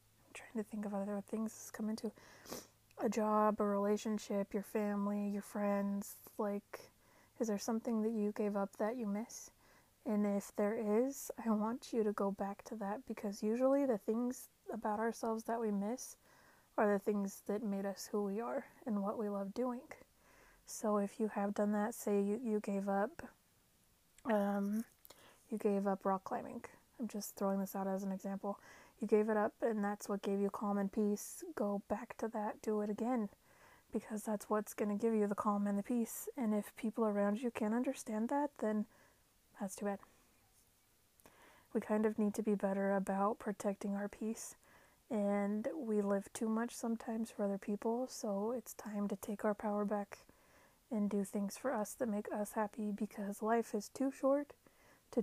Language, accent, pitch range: English, American, 205-225 Hz